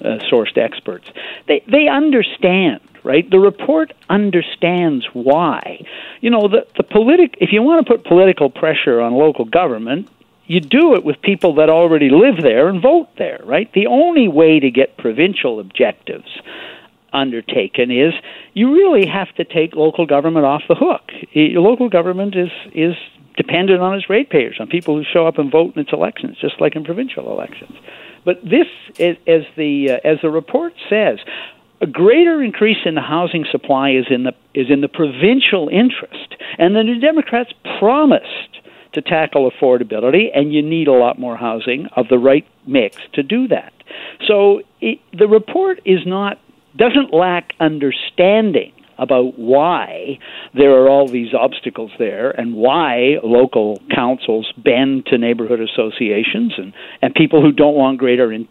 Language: English